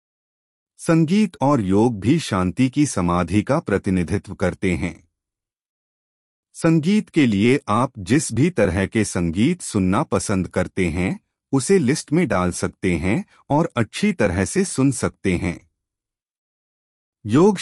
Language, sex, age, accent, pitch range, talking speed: Hindi, male, 40-59, native, 90-140 Hz, 130 wpm